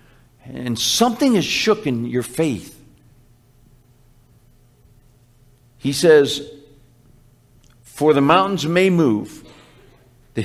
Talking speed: 85 wpm